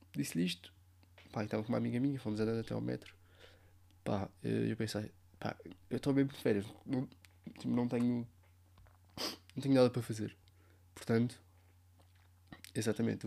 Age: 20-39